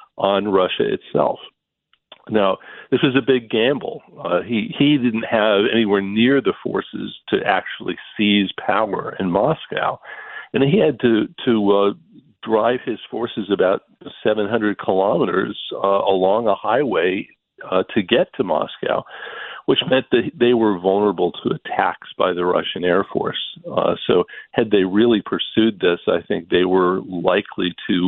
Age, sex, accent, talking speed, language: 50-69, male, American, 150 wpm, English